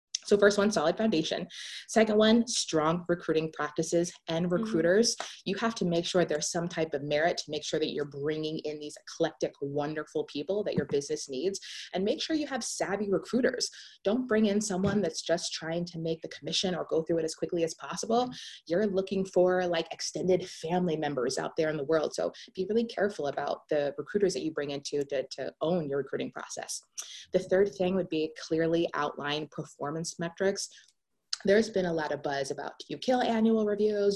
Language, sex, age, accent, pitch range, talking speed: English, female, 20-39, American, 160-205 Hz, 200 wpm